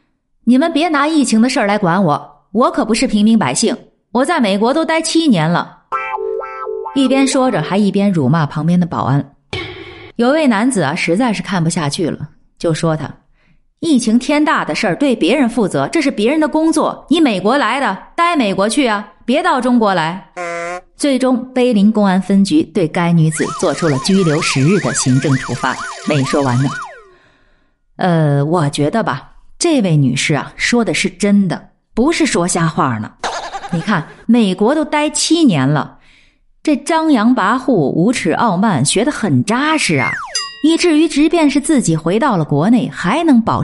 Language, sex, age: Chinese, female, 30-49